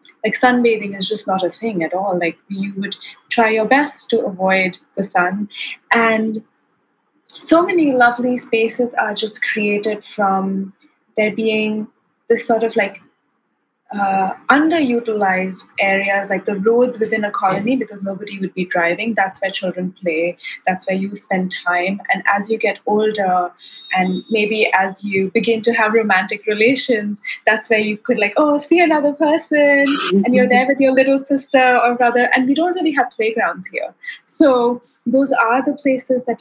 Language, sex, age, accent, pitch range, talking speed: English, female, 20-39, Indian, 205-250 Hz, 170 wpm